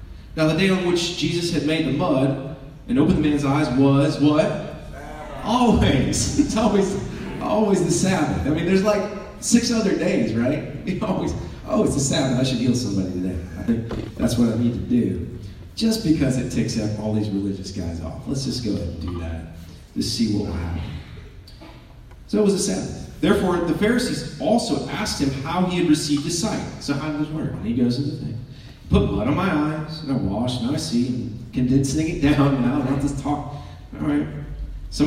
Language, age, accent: English, 30-49, American